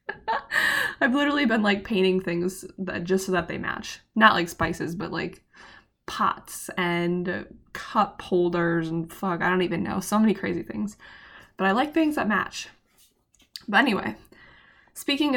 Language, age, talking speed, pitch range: English, 20-39, 155 wpm, 180-205 Hz